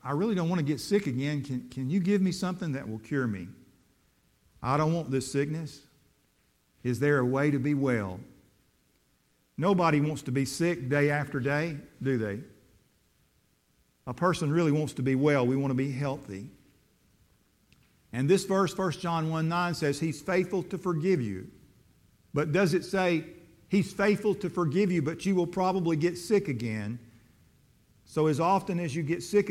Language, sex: English, male